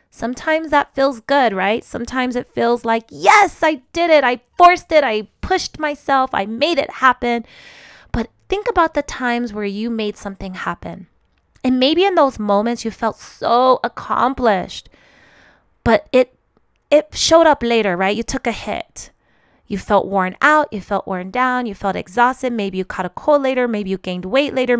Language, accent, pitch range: English, American, 190-255 Hz